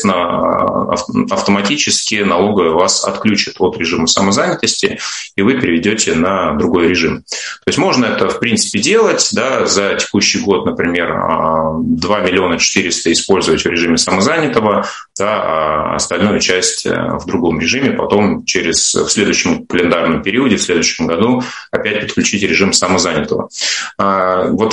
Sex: male